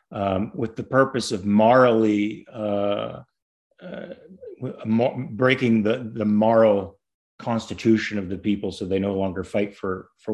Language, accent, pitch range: English, American, 100-110 Hz